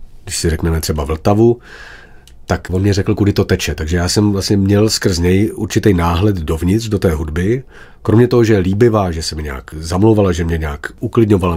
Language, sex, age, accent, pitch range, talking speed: Czech, male, 40-59, native, 90-105 Hz, 200 wpm